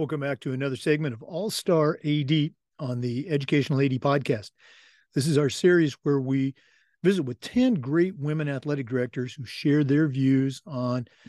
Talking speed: 165 wpm